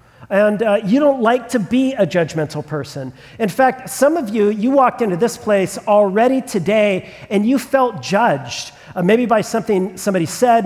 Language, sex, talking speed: English, male, 180 wpm